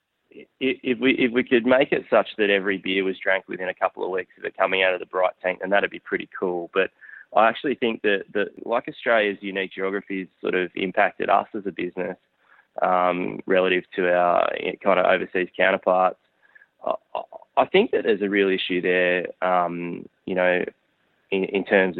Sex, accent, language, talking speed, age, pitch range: male, Australian, English, 190 wpm, 20-39, 90-100 Hz